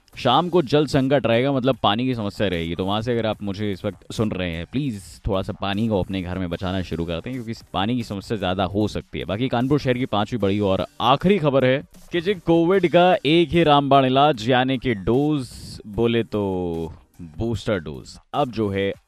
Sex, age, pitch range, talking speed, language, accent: male, 20-39, 95-135 Hz, 215 wpm, Hindi, native